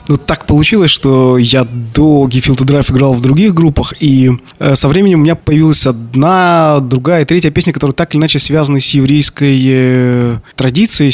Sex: male